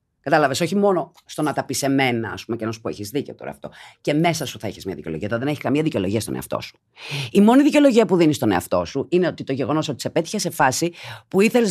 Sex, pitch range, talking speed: female, 140-215 Hz, 255 wpm